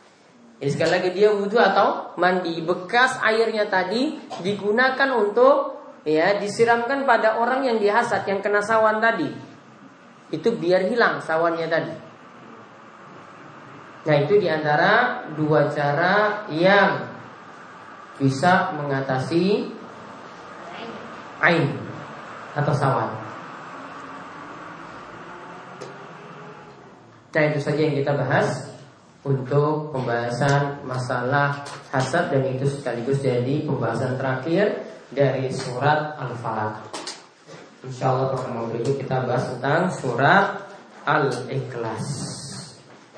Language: Indonesian